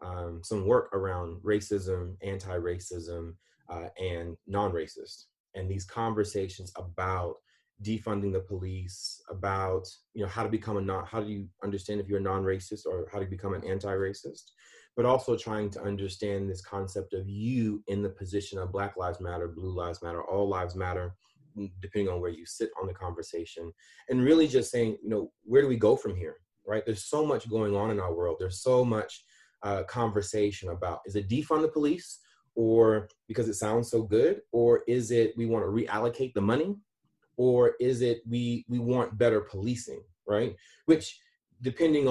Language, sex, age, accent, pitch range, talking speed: English, male, 30-49, American, 95-115 Hz, 180 wpm